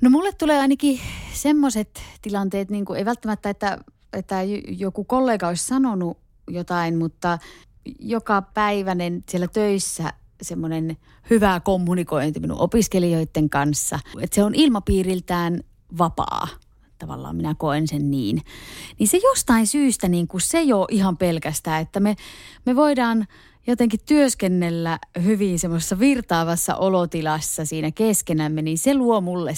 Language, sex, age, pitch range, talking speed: Finnish, female, 30-49, 165-225 Hz, 130 wpm